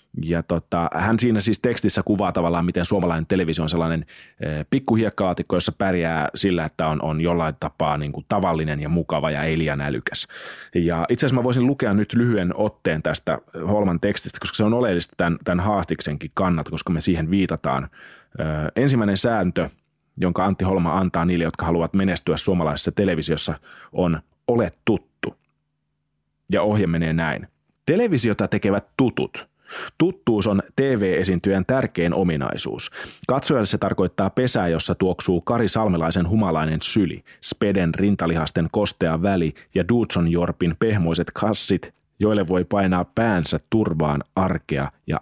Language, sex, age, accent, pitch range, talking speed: Finnish, male, 30-49, native, 80-105 Hz, 140 wpm